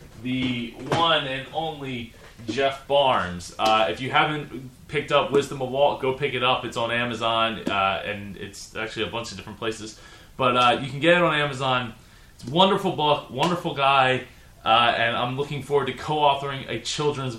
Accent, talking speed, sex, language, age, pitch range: American, 185 wpm, male, English, 20-39, 115-145 Hz